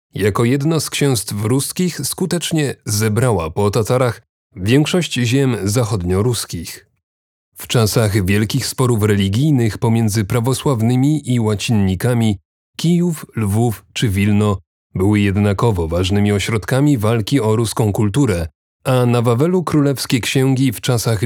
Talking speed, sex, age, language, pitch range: 115 wpm, male, 30-49, Polish, 105-135 Hz